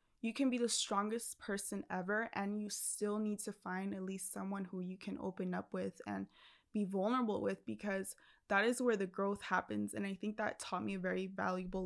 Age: 20-39